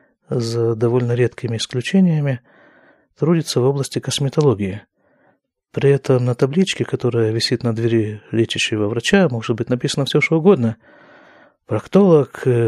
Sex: male